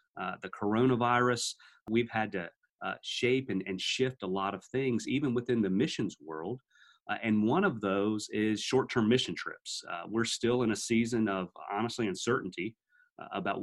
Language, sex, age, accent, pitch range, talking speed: English, male, 30-49, American, 105-130 Hz, 175 wpm